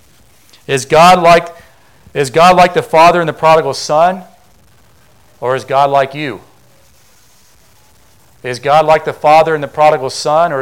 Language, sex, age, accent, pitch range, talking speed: English, male, 40-59, American, 130-180 Hz, 155 wpm